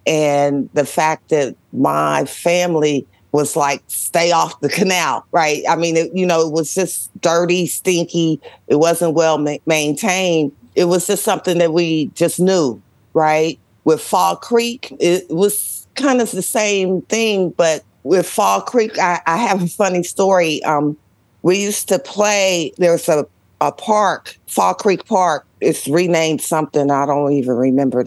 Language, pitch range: English, 155-205 Hz